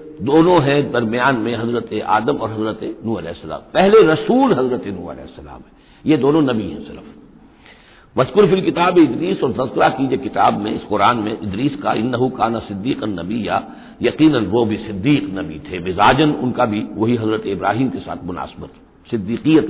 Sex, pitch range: male, 100-145 Hz